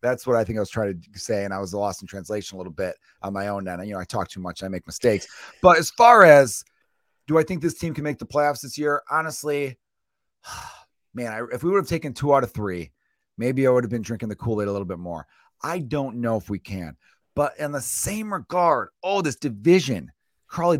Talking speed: 240 wpm